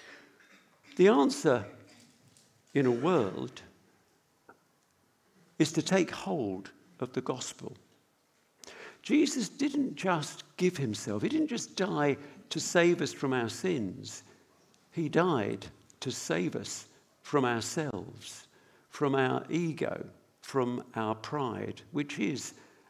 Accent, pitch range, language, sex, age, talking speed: British, 145-225 Hz, English, male, 60-79, 110 wpm